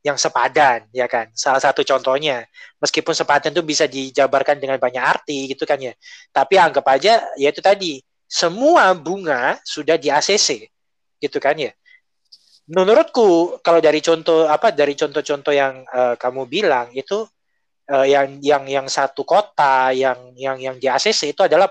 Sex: male